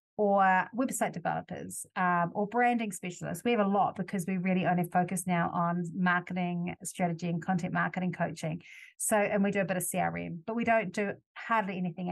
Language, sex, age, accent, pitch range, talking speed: English, female, 30-49, Australian, 180-215 Hz, 190 wpm